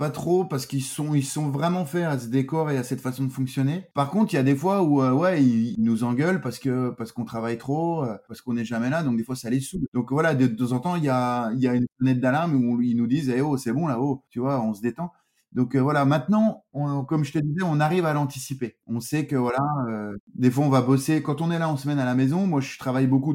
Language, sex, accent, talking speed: French, male, French, 295 wpm